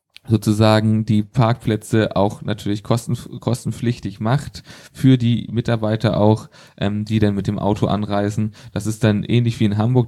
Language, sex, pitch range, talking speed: German, male, 105-120 Hz, 155 wpm